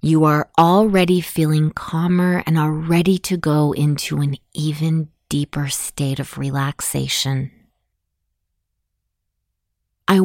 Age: 30-49